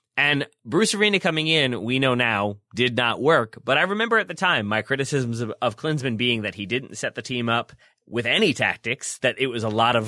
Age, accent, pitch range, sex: 30-49, American, 110-140 Hz, male